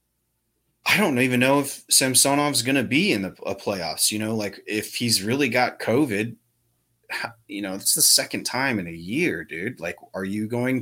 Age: 30-49